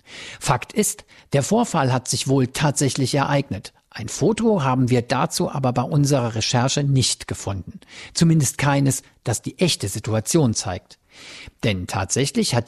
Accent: German